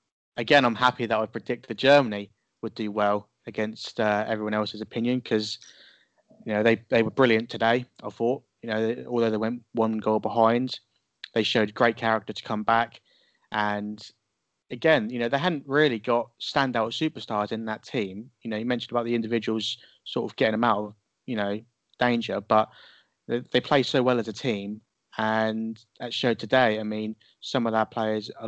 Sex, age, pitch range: male, 20-39, 105-120 Hz